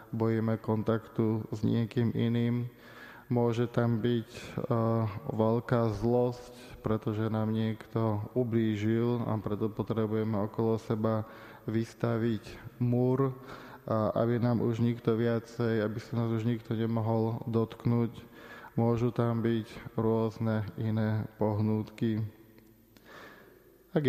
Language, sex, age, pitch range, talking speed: Slovak, male, 20-39, 110-120 Hz, 105 wpm